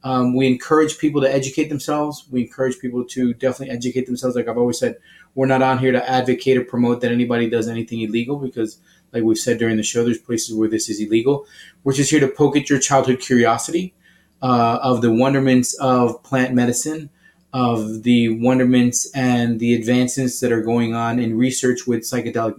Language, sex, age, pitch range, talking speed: English, male, 20-39, 120-135 Hz, 195 wpm